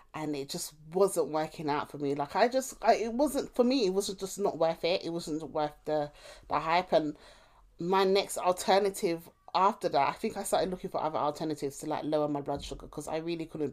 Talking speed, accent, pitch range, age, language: 225 wpm, British, 160-220 Hz, 20-39, English